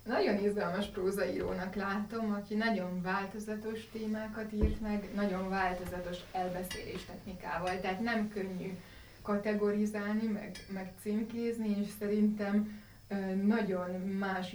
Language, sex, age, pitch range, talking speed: Hungarian, female, 20-39, 185-210 Hz, 105 wpm